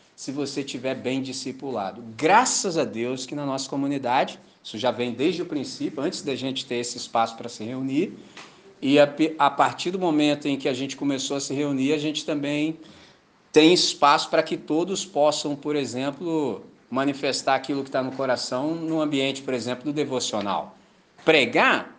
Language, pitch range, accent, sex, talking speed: Portuguese, 135-205 Hz, Brazilian, male, 175 wpm